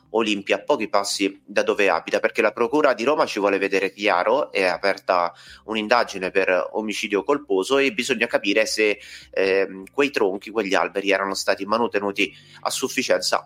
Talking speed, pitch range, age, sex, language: 155 wpm, 100-125 Hz, 30-49, male, Italian